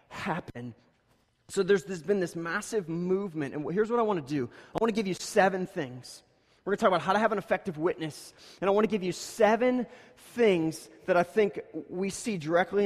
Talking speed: 215 wpm